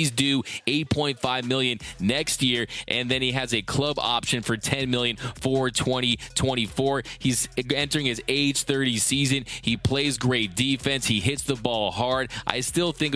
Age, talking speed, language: 20-39, 165 wpm, English